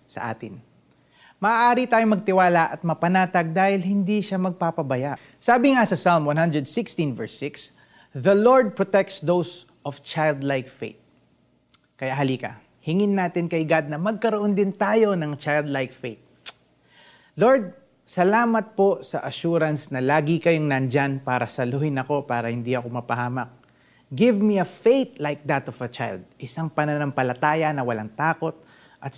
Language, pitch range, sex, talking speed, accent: Filipino, 130-190 Hz, male, 140 wpm, native